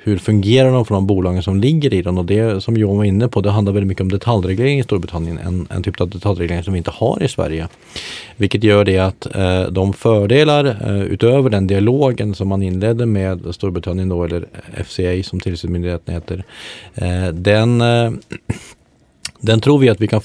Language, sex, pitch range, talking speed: Swedish, male, 95-115 Hz, 200 wpm